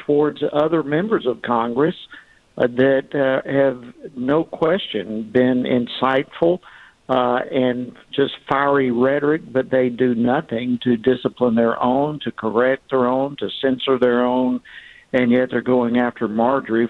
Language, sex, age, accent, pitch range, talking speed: English, male, 60-79, American, 120-135 Hz, 140 wpm